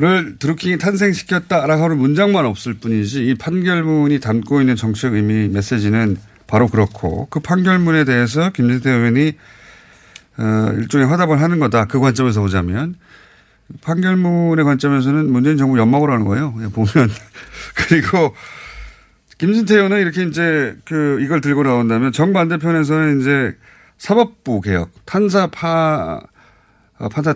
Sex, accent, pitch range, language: male, native, 110-155 Hz, Korean